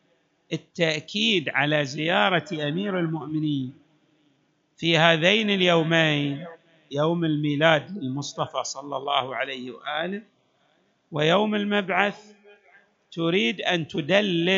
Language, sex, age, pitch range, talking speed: Arabic, male, 50-69, 160-215 Hz, 80 wpm